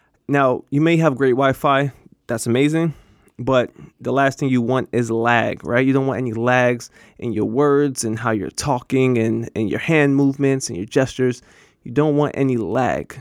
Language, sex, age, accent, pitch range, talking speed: English, male, 20-39, American, 120-140 Hz, 190 wpm